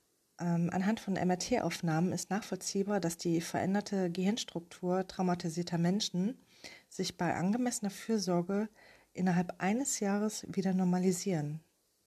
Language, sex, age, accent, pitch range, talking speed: German, female, 30-49, German, 170-190 Hz, 100 wpm